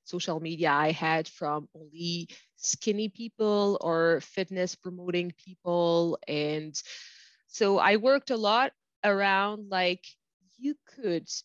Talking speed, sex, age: 115 wpm, female, 30-49